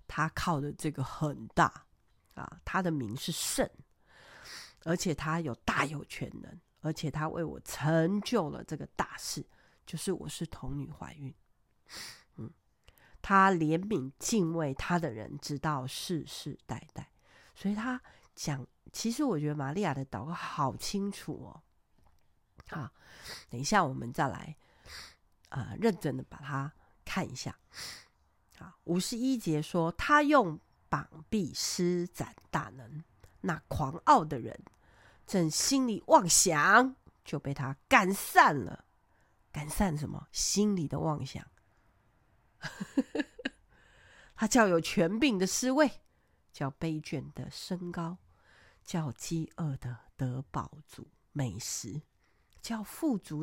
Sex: female